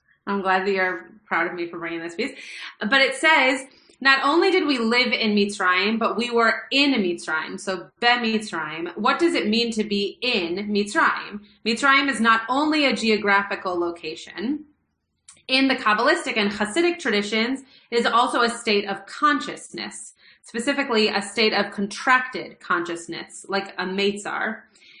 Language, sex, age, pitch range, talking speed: English, female, 30-49, 200-250 Hz, 160 wpm